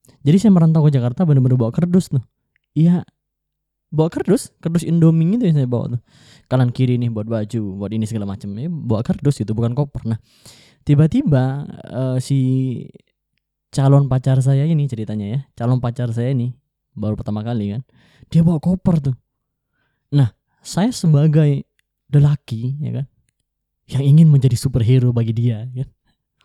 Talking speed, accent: 160 wpm, native